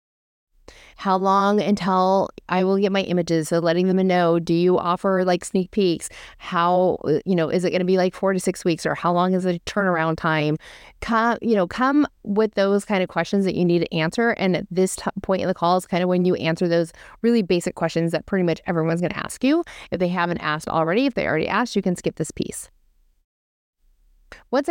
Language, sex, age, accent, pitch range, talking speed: English, female, 30-49, American, 180-225 Hz, 225 wpm